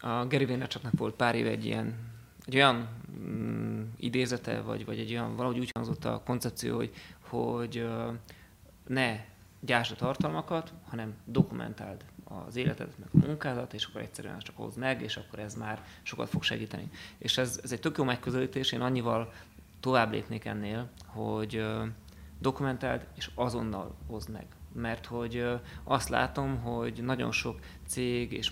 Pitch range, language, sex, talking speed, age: 110-130 Hz, Hungarian, male, 155 wpm, 20-39